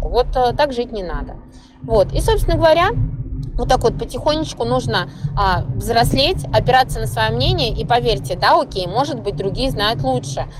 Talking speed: 170 wpm